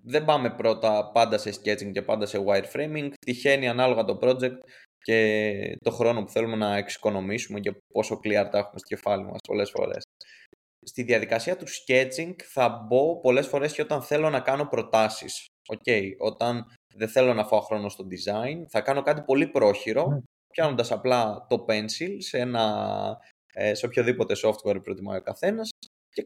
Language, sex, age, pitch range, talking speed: Greek, male, 20-39, 105-140 Hz, 165 wpm